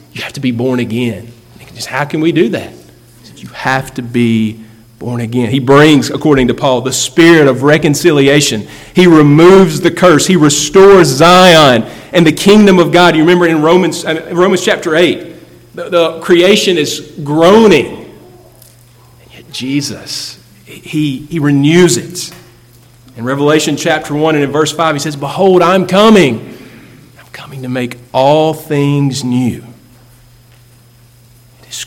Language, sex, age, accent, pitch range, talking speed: English, male, 40-59, American, 120-160 Hz, 160 wpm